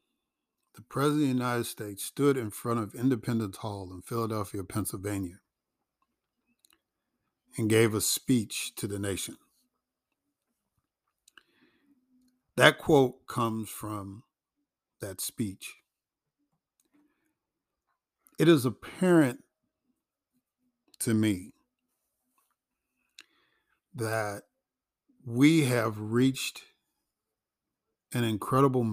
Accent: American